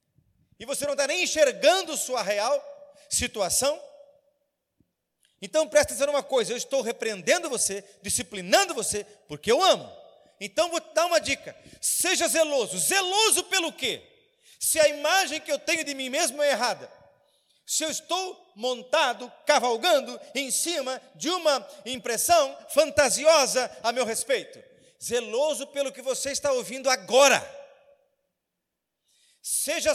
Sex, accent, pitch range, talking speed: male, Brazilian, 245-315 Hz, 135 wpm